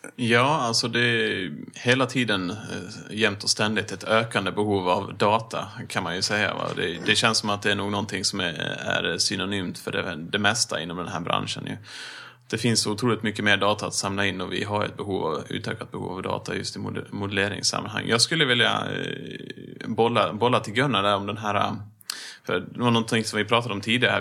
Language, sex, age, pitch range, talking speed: Swedish, male, 30-49, 100-120 Hz, 190 wpm